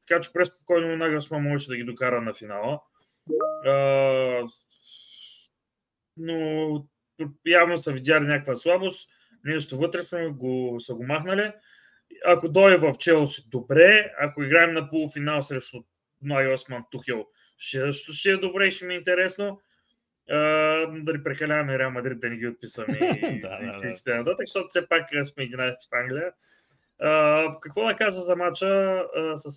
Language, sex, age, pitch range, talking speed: Bulgarian, male, 20-39, 130-170 Hz, 145 wpm